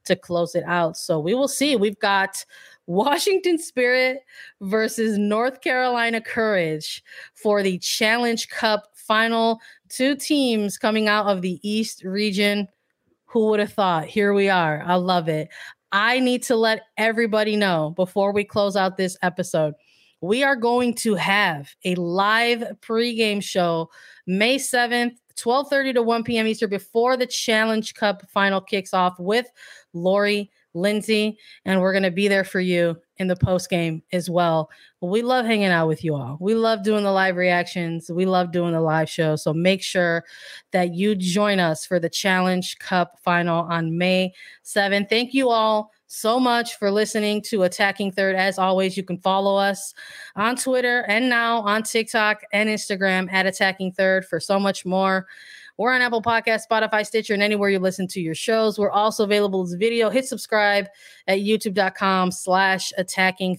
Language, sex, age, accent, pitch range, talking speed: English, female, 30-49, American, 185-225 Hz, 170 wpm